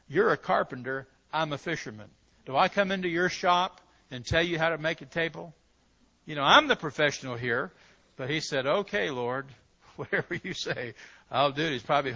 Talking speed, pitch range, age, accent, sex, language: 190 wpm, 130-170 Hz, 60-79, American, male, English